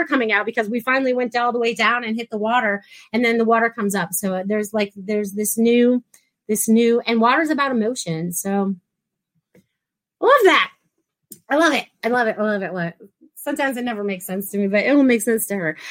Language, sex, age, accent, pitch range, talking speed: English, female, 30-49, American, 220-285 Hz, 225 wpm